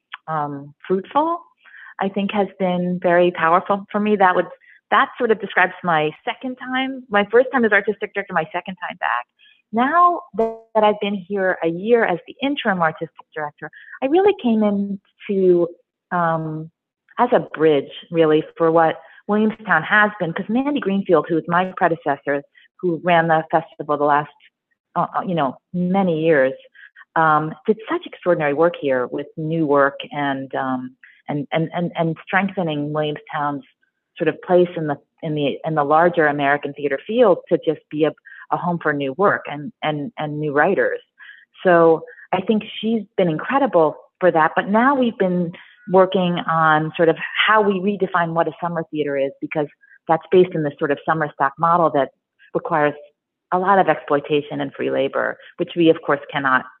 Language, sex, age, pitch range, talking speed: English, female, 40-59, 155-205 Hz, 175 wpm